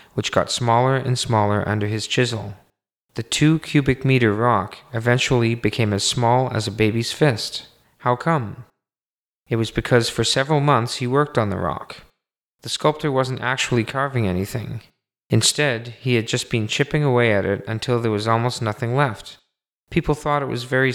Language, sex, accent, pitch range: English, male, American, 110-130 Hz